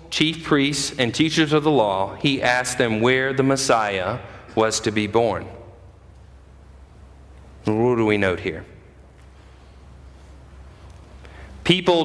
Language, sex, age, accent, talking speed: English, male, 40-59, American, 115 wpm